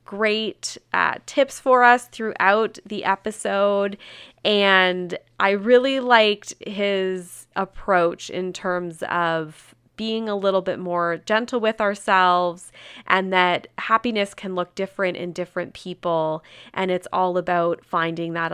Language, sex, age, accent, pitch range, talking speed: English, female, 20-39, American, 180-245 Hz, 130 wpm